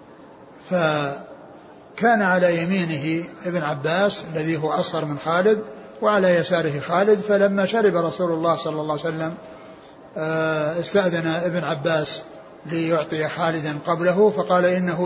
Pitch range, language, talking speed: 160-180 Hz, Arabic, 115 wpm